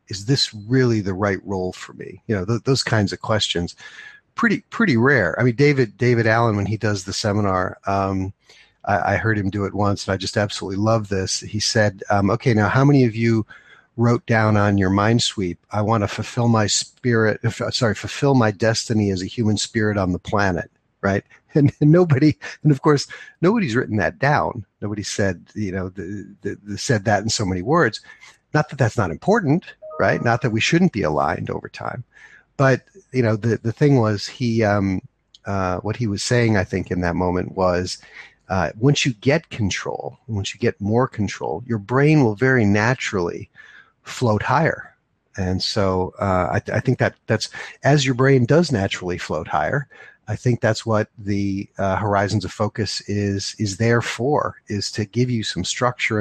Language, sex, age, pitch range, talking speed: English, male, 50-69, 100-125 Hz, 190 wpm